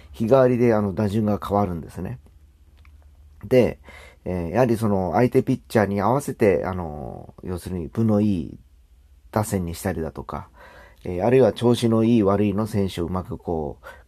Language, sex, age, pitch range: Japanese, male, 40-59, 85-115 Hz